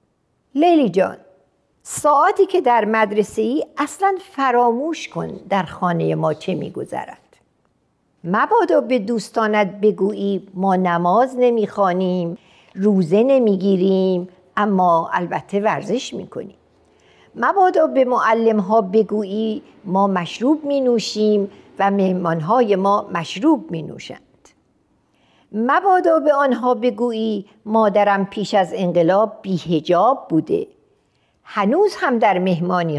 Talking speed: 110 wpm